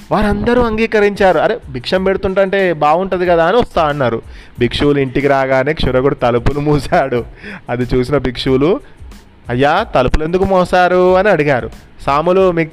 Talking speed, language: 125 wpm, Telugu